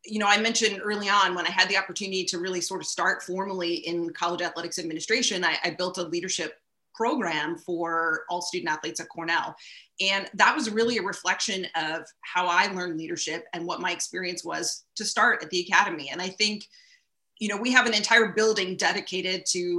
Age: 30-49